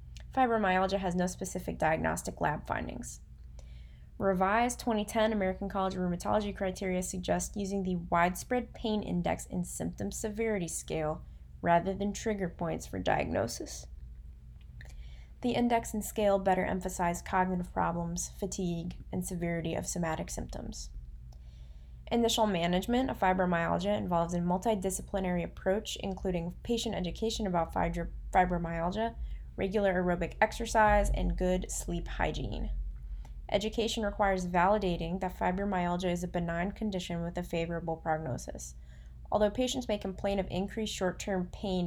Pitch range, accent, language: 165-200 Hz, American, English